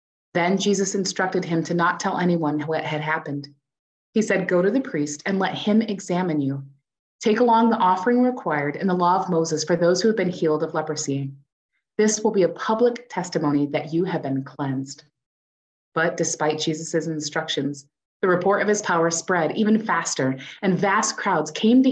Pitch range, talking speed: 145-195 Hz, 185 wpm